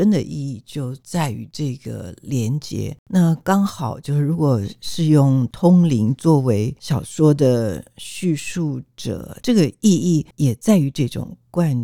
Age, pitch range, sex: 60-79, 125-160 Hz, female